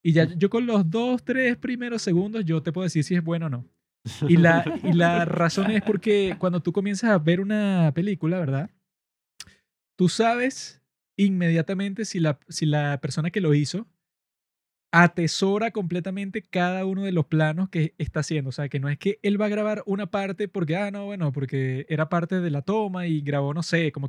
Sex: male